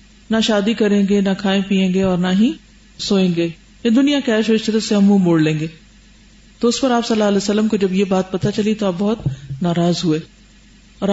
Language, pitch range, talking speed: Urdu, 195-235 Hz, 220 wpm